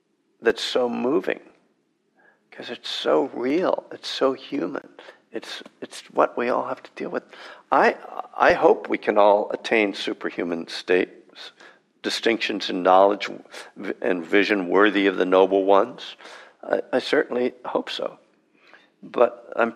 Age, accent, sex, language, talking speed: 60-79, American, male, English, 135 wpm